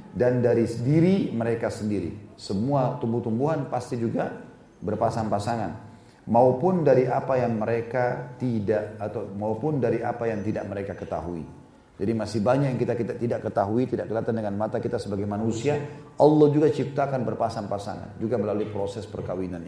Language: Indonesian